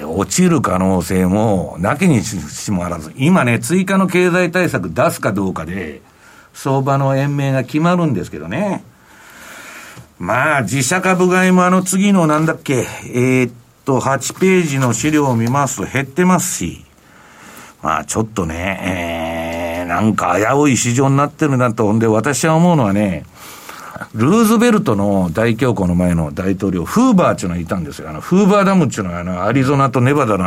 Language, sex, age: Japanese, male, 60-79